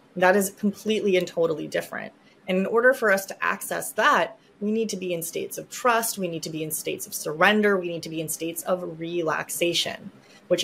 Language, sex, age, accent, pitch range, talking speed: English, female, 20-39, American, 170-215 Hz, 220 wpm